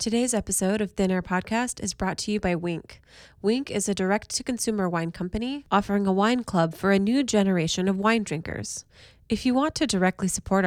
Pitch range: 170-205 Hz